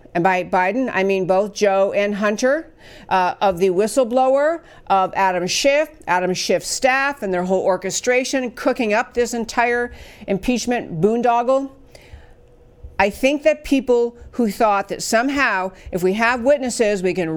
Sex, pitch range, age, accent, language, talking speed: female, 185-225 Hz, 50-69, American, English, 150 wpm